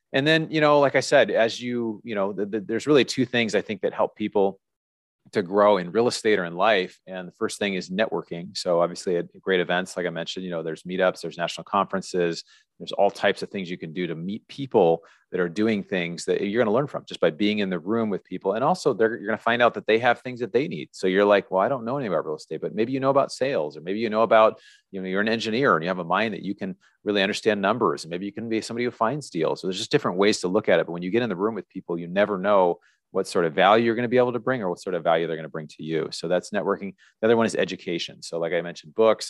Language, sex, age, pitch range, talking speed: English, male, 30-49, 90-120 Hz, 300 wpm